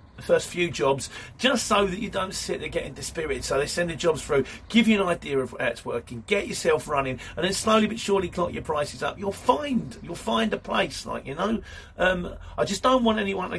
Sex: male